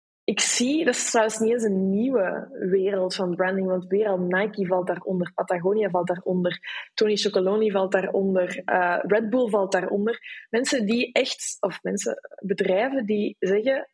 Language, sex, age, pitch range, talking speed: Dutch, female, 20-39, 190-230 Hz, 160 wpm